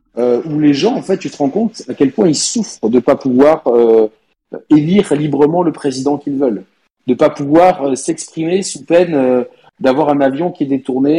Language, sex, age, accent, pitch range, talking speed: French, male, 40-59, French, 130-165 Hz, 220 wpm